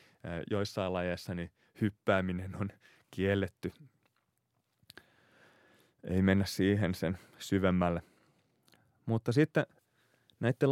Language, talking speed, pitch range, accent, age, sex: Finnish, 80 wpm, 95-115 Hz, native, 30-49, male